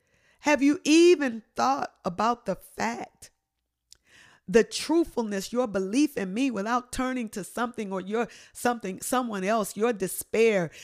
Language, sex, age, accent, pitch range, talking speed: English, female, 50-69, American, 185-255 Hz, 135 wpm